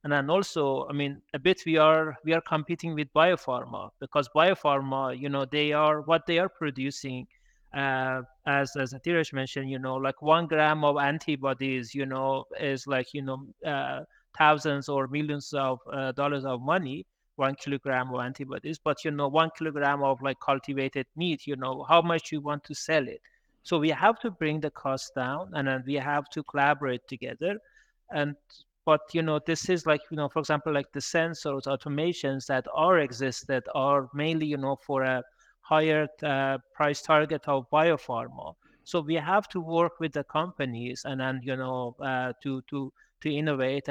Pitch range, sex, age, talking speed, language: 135-160 Hz, male, 30-49, 185 wpm, English